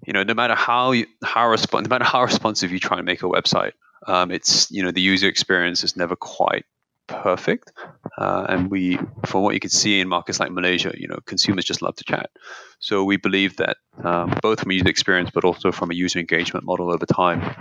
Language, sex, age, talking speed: English, male, 20-39, 225 wpm